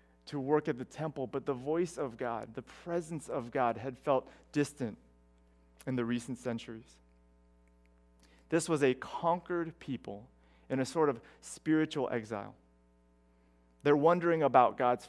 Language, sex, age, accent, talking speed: English, male, 30-49, American, 145 wpm